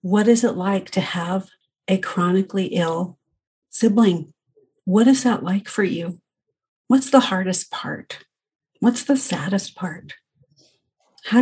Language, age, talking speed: English, 50-69, 130 wpm